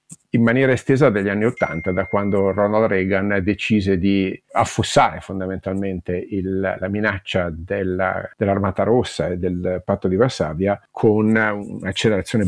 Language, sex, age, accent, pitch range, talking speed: Italian, male, 50-69, native, 100-120 Hz, 130 wpm